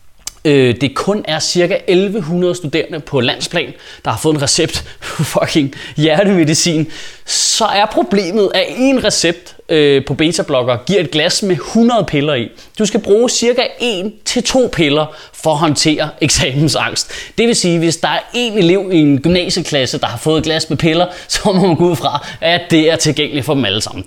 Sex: male